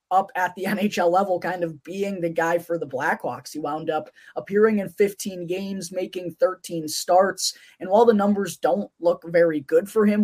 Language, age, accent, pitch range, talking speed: English, 20-39, American, 165-195 Hz, 195 wpm